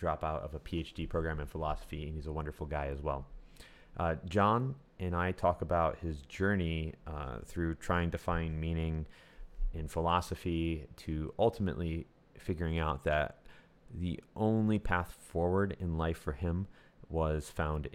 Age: 30-49